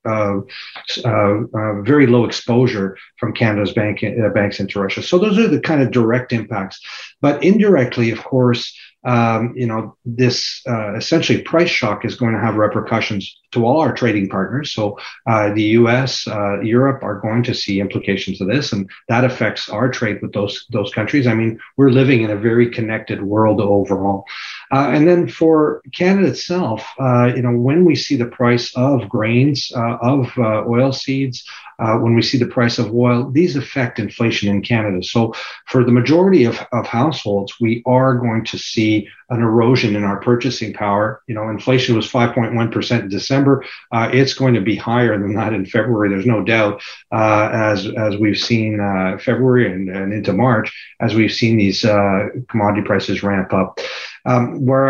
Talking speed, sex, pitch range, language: 185 wpm, male, 105-130 Hz, English